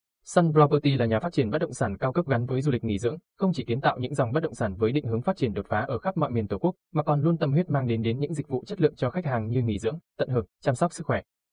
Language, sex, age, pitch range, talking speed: Vietnamese, male, 20-39, 110-150 Hz, 335 wpm